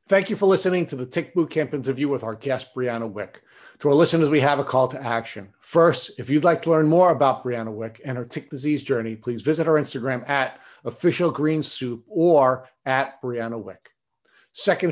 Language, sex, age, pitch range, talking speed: English, male, 50-69, 125-160 Hz, 200 wpm